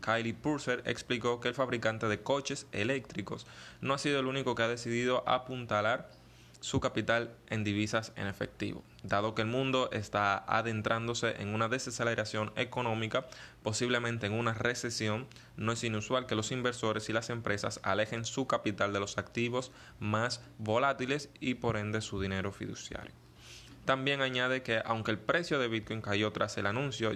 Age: 20-39